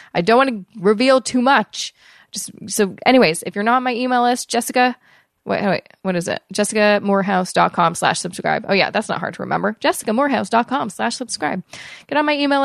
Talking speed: 190 wpm